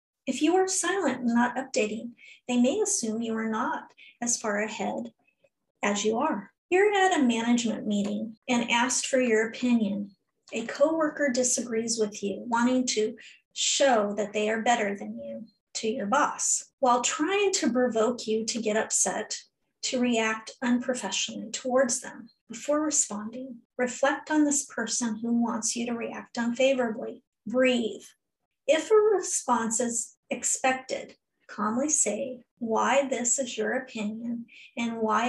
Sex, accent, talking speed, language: female, American, 145 wpm, English